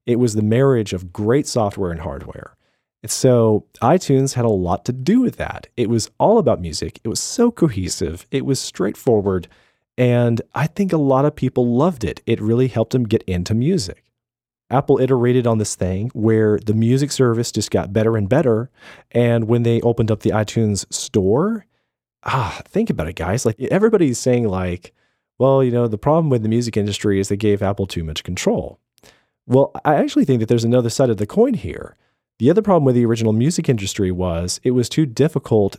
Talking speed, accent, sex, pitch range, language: 200 wpm, American, male, 105-130 Hz, English